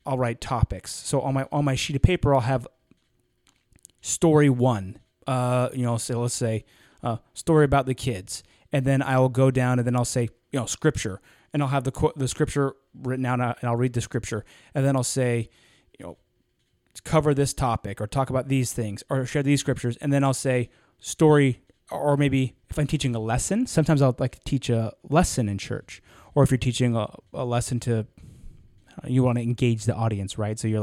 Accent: American